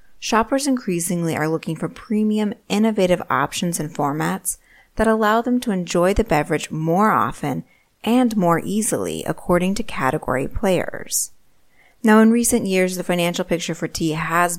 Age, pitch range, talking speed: 30-49, 155-210 Hz, 150 wpm